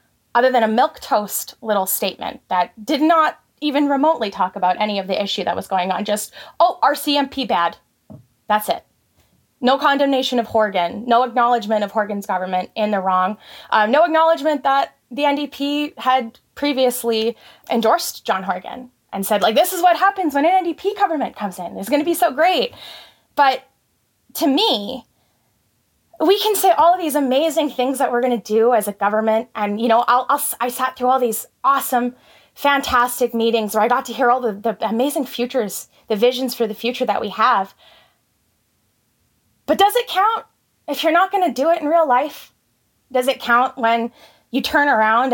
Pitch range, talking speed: 220-290 Hz, 185 wpm